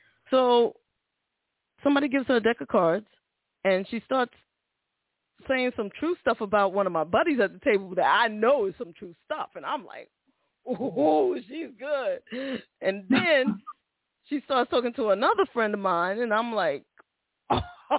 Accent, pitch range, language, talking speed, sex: American, 195-275 Hz, English, 165 wpm, female